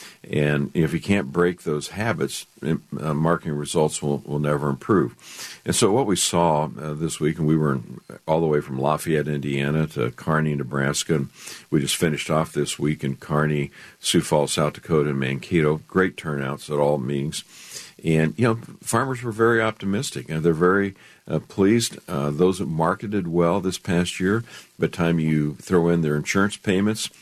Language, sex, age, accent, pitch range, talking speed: English, male, 50-69, American, 75-90 Hz, 185 wpm